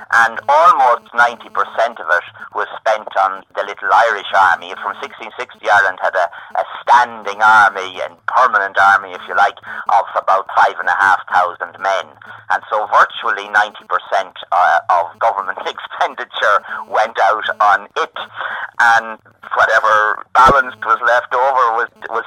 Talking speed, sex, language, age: 145 wpm, male, English, 40-59